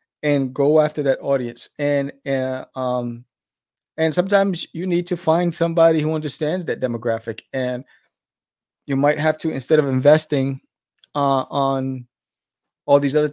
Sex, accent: male, American